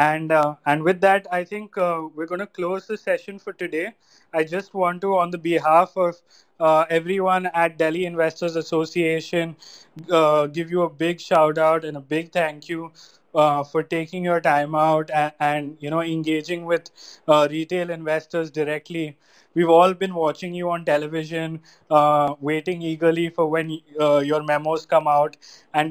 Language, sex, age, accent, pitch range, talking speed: Hindi, male, 20-39, native, 155-175 Hz, 175 wpm